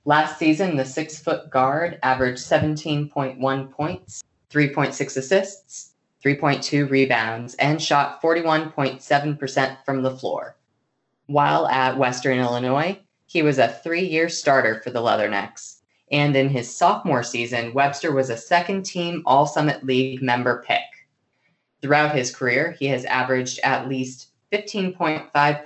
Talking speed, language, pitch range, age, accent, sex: 120 wpm, English, 130-155 Hz, 20-39, American, female